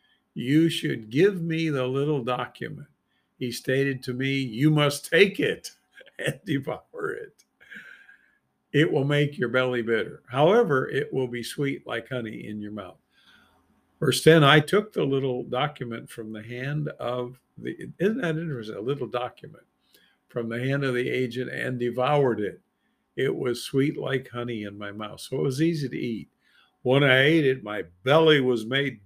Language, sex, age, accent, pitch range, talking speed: English, male, 50-69, American, 120-150 Hz, 170 wpm